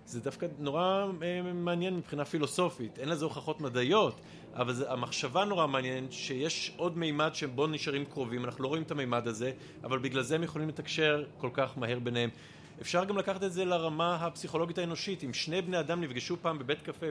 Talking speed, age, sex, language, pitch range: 185 wpm, 40-59, male, Hebrew, 130-170 Hz